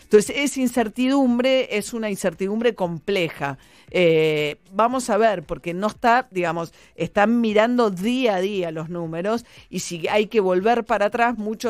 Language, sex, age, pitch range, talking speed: Spanish, female, 40-59, 170-215 Hz, 155 wpm